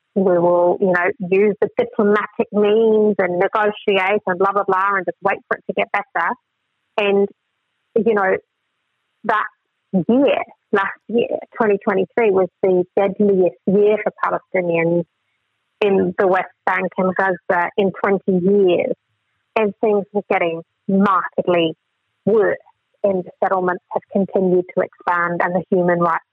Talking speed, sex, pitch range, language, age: 140 wpm, female, 185-225 Hz, English, 30-49